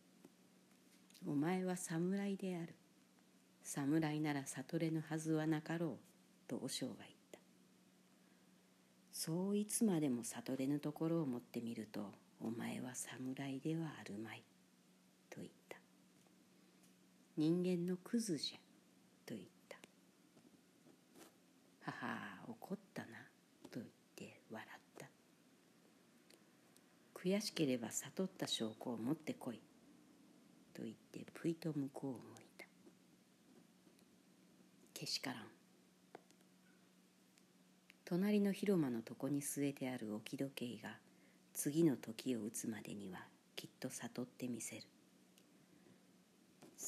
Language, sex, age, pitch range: Japanese, female, 50-69, 130-170 Hz